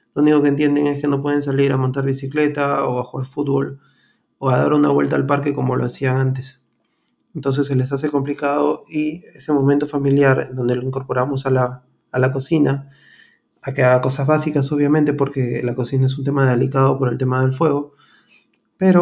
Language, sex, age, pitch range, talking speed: Spanish, male, 20-39, 130-150 Hz, 200 wpm